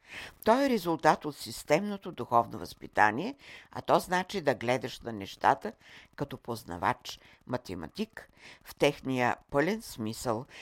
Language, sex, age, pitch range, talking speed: Bulgarian, female, 60-79, 120-180 Hz, 120 wpm